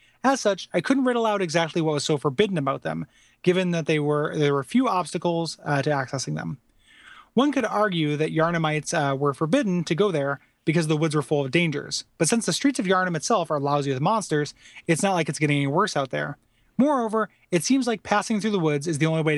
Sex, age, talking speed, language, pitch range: male, 30-49, 230 wpm, English, 145-205 Hz